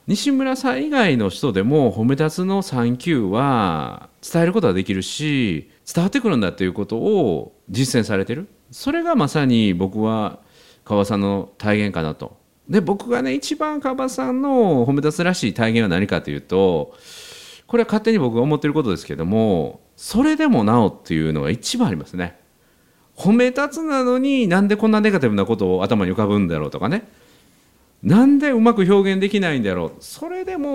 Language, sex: Japanese, male